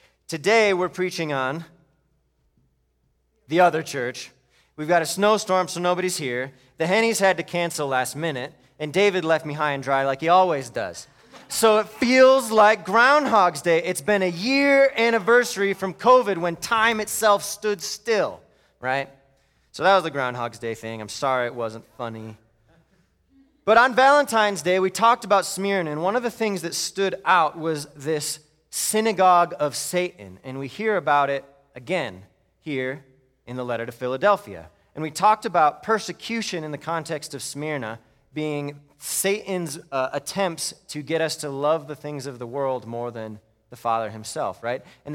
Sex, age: male, 30-49